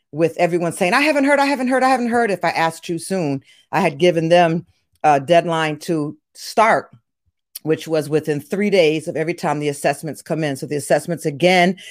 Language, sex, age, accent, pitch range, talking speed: English, female, 40-59, American, 155-180 Hz, 205 wpm